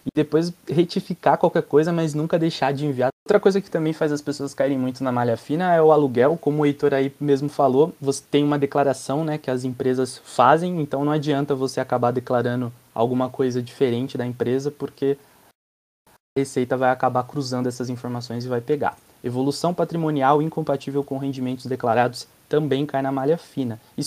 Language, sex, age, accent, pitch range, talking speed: Portuguese, male, 20-39, Brazilian, 130-165 Hz, 185 wpm